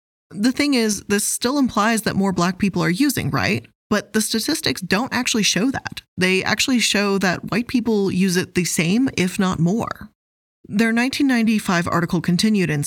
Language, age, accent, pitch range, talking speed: English, 20-39, American, 170-215 Hz, 175 wpm